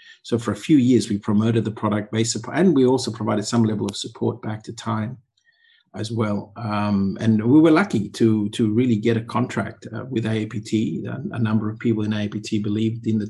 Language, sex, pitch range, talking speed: English, male, 105-115 Hz, 210 wpm